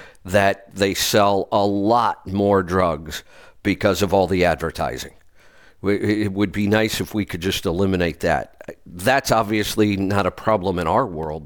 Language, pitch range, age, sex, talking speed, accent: English, 90-105 Hz, 50-69, male, 155 wpm, American